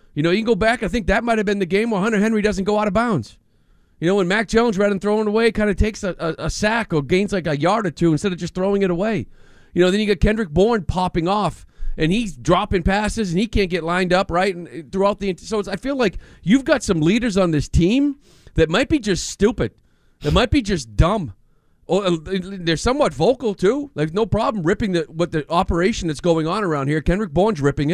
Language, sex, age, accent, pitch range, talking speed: English, male, 40-59, American, 165-210 Hz, 250 wpm